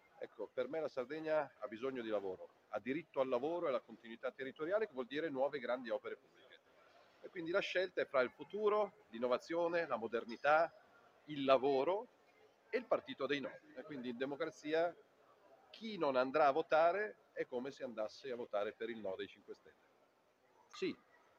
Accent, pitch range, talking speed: native, 120-200 Hz, 180 wpm